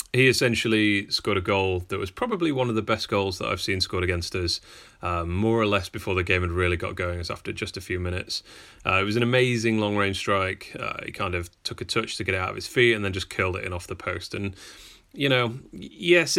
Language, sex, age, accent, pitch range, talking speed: English, male, 30-49, British, 90-115 Hz, 255 wpm